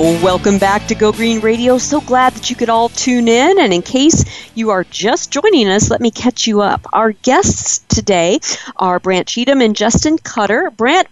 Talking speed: 200 wpm